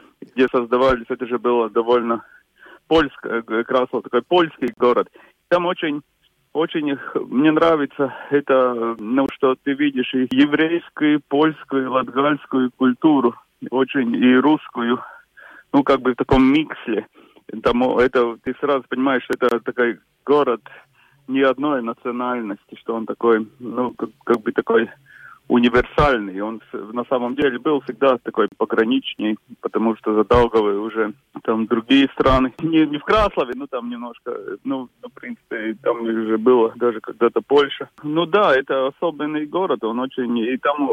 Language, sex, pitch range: Russian, male, 120-150 Hz